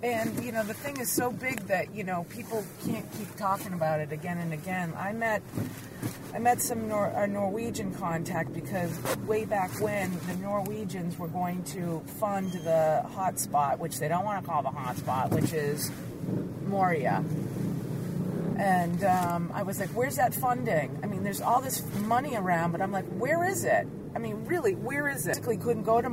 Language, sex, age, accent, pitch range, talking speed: English, female, 40-59, American, 155-195 Hz, 195 wpm